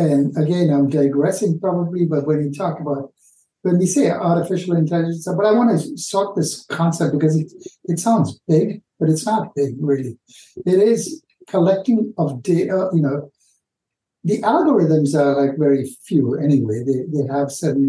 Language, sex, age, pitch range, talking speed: English, male, 60-79, 145-190 Hz, 170 wpm